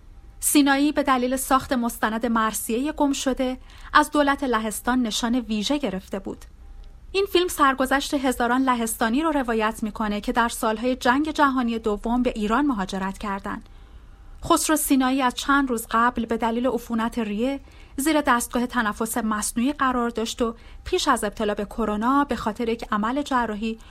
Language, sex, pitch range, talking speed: Persian, female, 215-265 Hz, 150 wpm